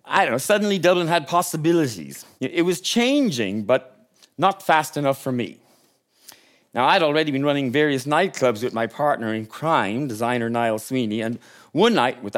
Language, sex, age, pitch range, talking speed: English, male, 40-59, 120-175 Hz, 170 wpm